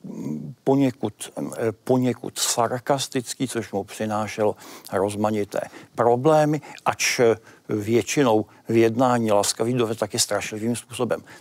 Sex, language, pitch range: male, Czech, 110-140 Hz